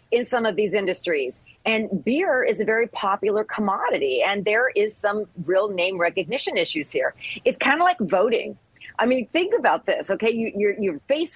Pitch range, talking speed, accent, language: 175-250 Hz, 185 wpm, American, English